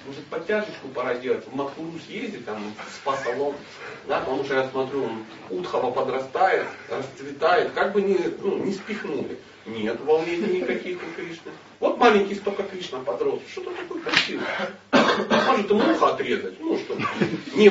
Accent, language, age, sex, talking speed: native, Russian, 40-59, male, 155 wpm